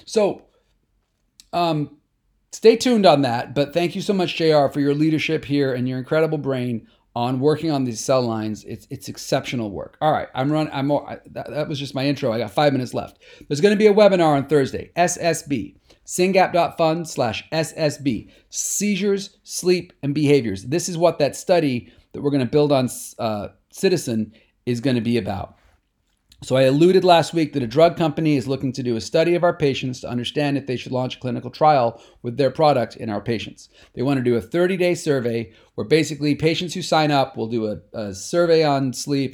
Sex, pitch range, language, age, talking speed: male, 125-170 Hz, English, 40-59, 205 wpm